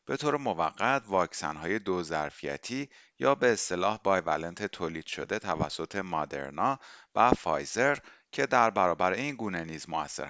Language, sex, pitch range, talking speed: Persian, male, 80-115 Hz, 135 wpm